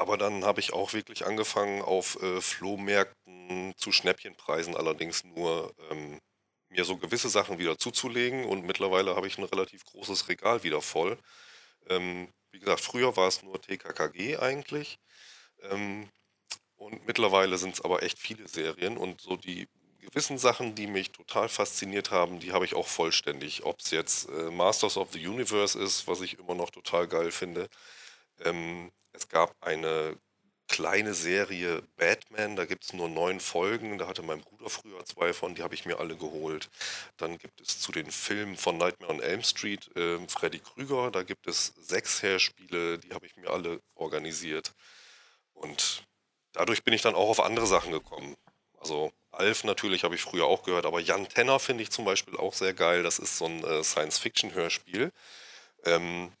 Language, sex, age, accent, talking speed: German, male, 30-49, German, 175 wpm